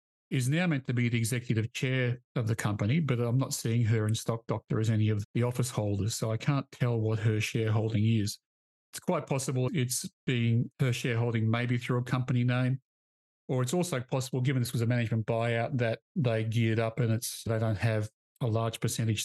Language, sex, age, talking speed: English, male, 40-59, 210 wpm